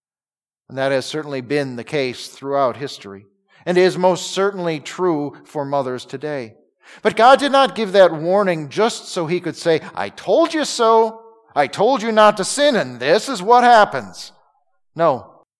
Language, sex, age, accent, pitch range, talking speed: English, male, 40-59, American, 130-190 Hz, 175 wpm